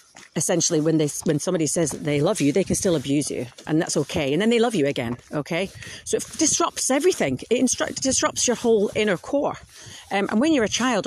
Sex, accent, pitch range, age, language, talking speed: female, British, 155-235 Hz, 40-59, English, 215 wpm